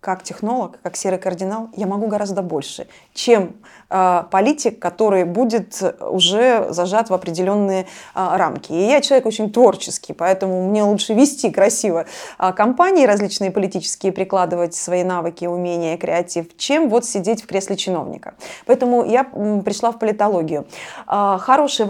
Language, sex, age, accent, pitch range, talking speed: Russian, female, 30-49, native, 190-245 Hz, 130 wpm